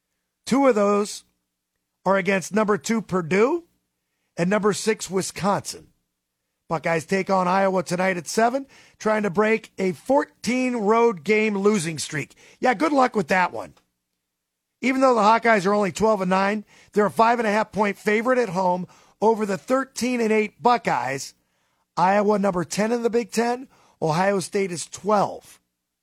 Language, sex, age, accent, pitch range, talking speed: English, male, 50-69, American, 150-215 Hz, 160 wpm